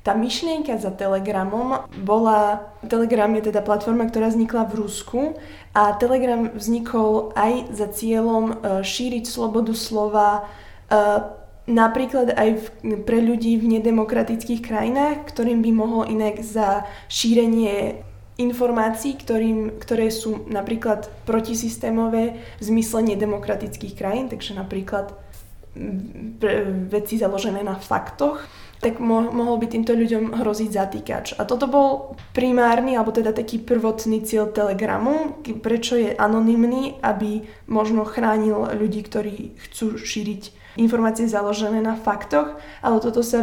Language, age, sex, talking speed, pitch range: Slovak, 20-39, female, 120 wpm, 210-230 Hz